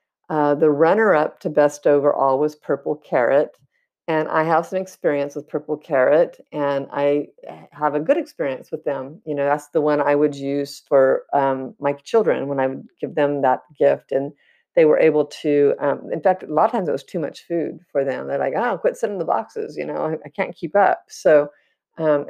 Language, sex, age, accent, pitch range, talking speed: English, female, 50-69, American, 140-170 Hz, 215 wpm